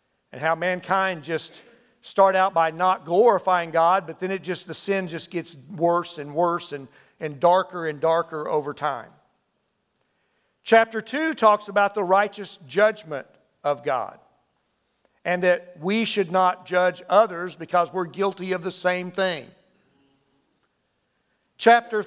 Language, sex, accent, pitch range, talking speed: English, male, American, 175-225 Hz, 140 wpm